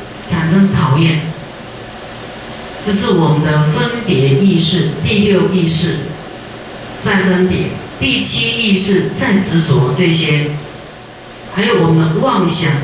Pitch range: 155-190 Hz